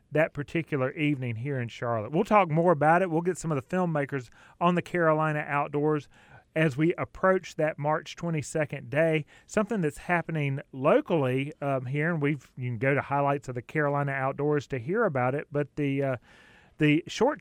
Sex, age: male, 30-49